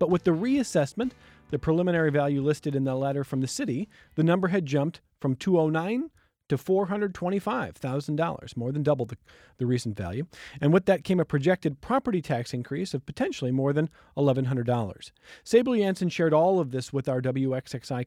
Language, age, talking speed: English, 40-59, 170 wpm